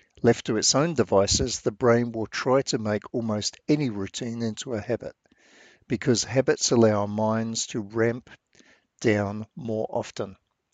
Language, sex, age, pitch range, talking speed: English, male, 50-69, 110-130 Hz, 150 wpm